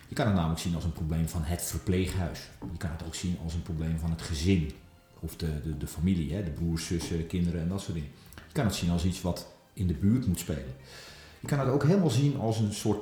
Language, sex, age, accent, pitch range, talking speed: Dutch, male, 40-59, Dutch, 85-105 Hz, 260 wpm